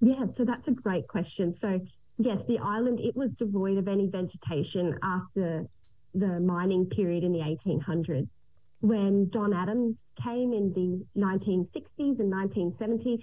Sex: female